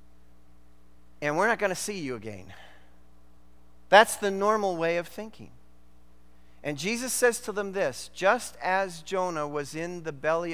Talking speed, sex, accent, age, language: 155 wpm, male, American, 40-59, English